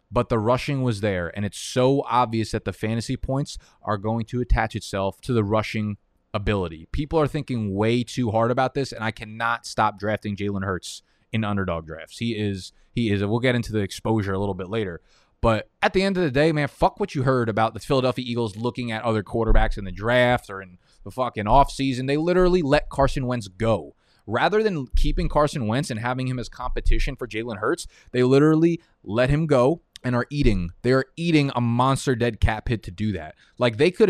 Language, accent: English, American